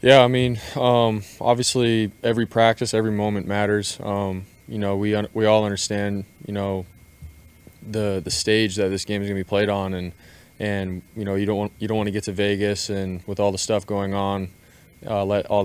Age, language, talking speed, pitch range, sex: 20-39, English, 205 wpm, 95-105 Hz, male